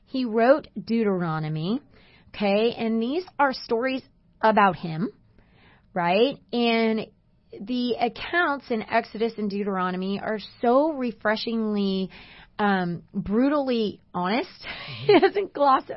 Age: 30-49